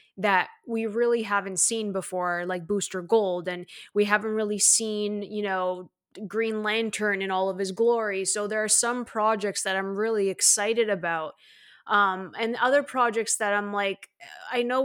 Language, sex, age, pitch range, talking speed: English, female, 20-39, 180-220 Hz, 170 wpm